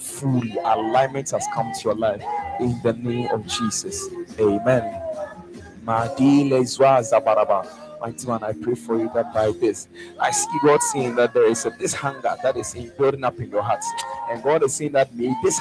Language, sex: English, male